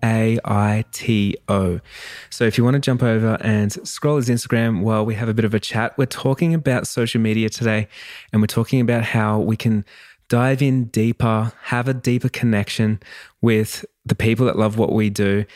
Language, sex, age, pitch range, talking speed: English, male, 20-39, 105-120 Hz, 195 wpm